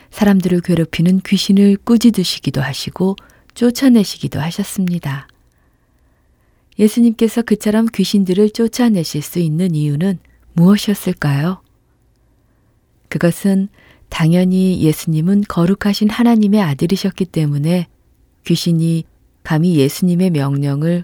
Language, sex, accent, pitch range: Korean, female, native, 135-190 Hz